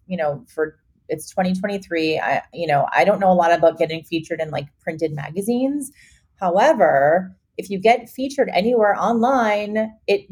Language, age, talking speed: English, 30-49, 165 wpm